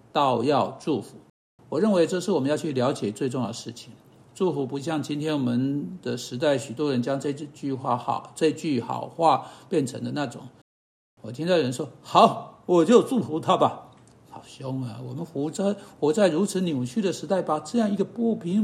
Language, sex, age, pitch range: Chinese, male, 60-79, 145-220 Hz